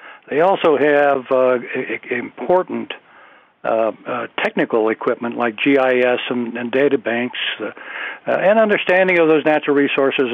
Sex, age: male, 60-79